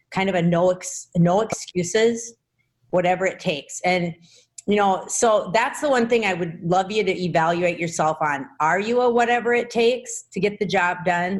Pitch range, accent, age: 165-205 Hz, American, 40-59